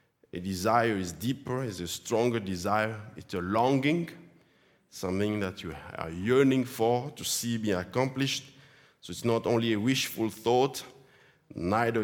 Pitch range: 105-135 Hz